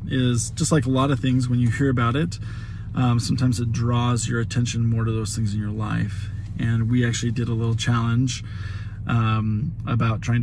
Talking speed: 200 wpm